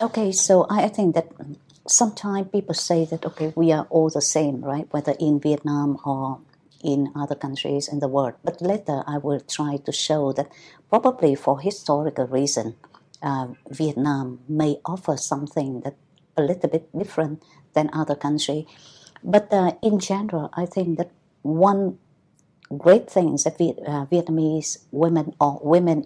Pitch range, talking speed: 145-175 Hz, 155 wpm